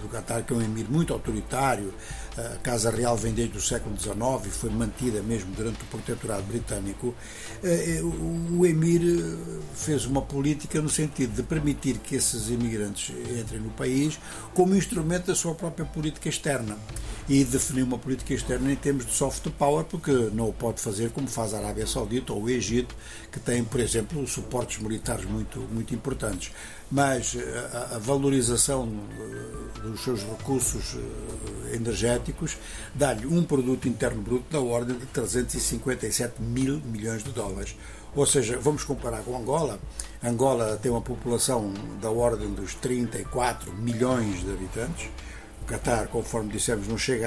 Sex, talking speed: male, 155 wpm